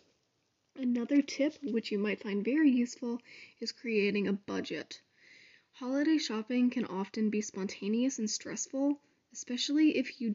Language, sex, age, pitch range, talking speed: English, female, 10-29, 210-265 Hz, 135 wpm